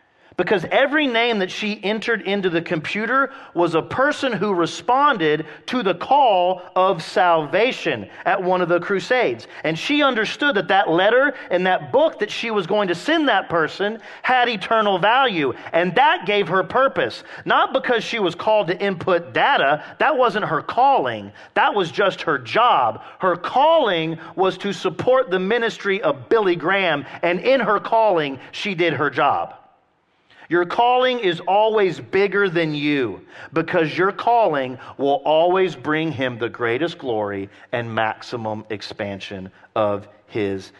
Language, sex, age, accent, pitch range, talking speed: English, male, 40-59, American, 170-255 Hz, 155 wpm